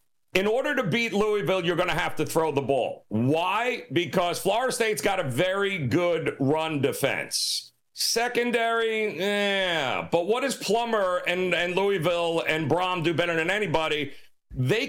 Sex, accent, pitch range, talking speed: male, American, 155-200 Hz, 155 wpm